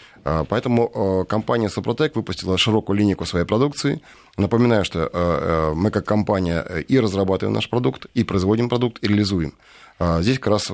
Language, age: Russian, 30-49